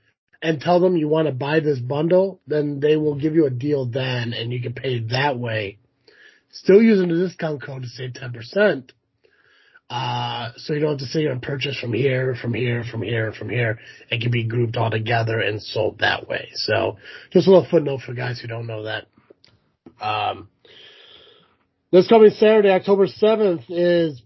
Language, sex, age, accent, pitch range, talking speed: English, male, 30-49, American, 120-180 Hz, 190 wpm